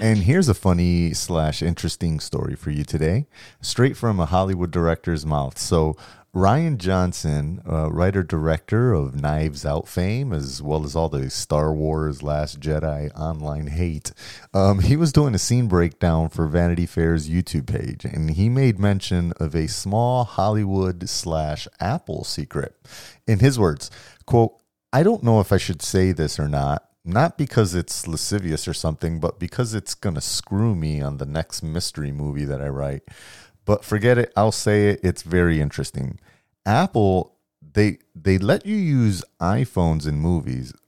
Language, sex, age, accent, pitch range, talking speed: English, male, 30-49, American, 75-105 Hz, 165 wpm